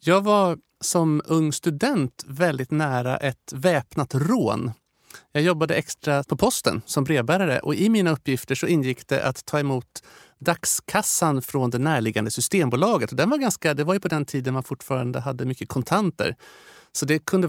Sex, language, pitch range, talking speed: male, Swedish, 130-175 Hz, 160 wpm